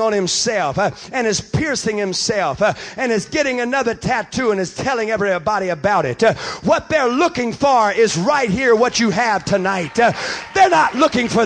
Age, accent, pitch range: 50-69, American, 210-265 Hz